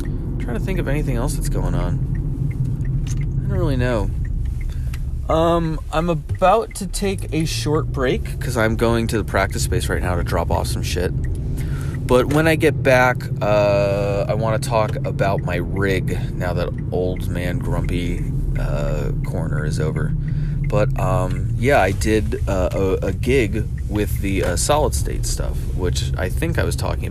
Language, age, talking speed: English, 30-49, 175 wpm